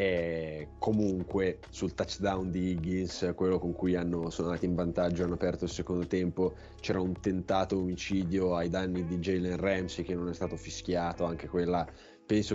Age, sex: 20-39, male